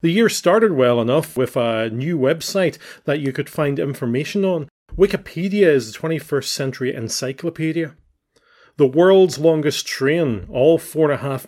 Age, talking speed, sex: 40-59, 155 wpm, male